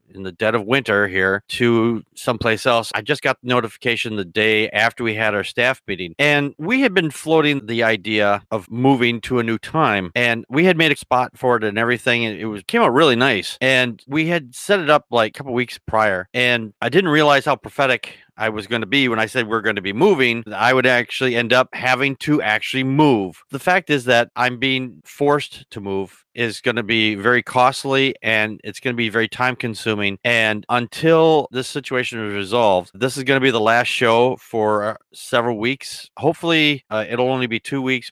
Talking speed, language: 215 wpm, English